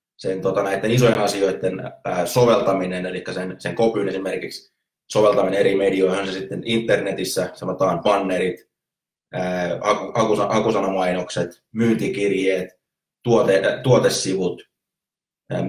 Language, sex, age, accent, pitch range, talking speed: Finnish, male, 20-39, native, 95-115 Hz, 95 wpm